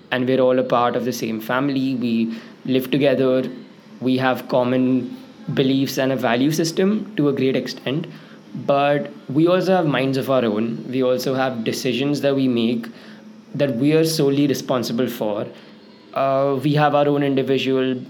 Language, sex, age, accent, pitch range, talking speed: English, male, 20-39, Indian, 130-155 Hz, 170 wpm